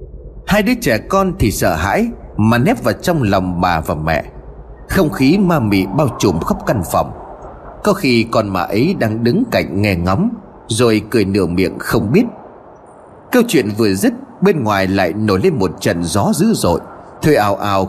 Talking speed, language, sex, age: 195 wpm, Vietnamese, male, 30-49